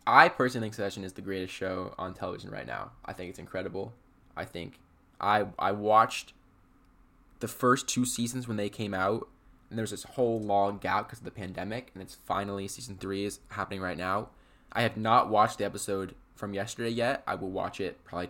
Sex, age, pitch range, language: male, 10-29, 95-120 Hz, English